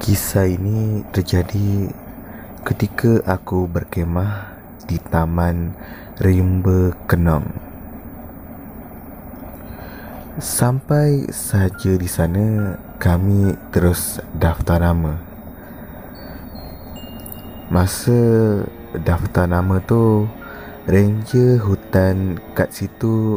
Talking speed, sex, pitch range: 65 wpm, male, 85-105 Hz